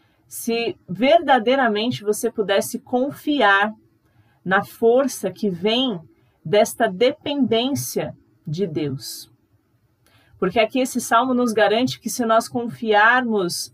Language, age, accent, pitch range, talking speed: Portuguese, 40-59, Brazilian, 195-250 Hz, 100 wpm